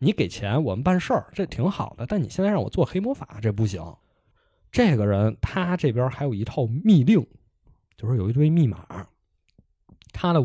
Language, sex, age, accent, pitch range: Chinese, male, 20-39, native, 105-165 Hz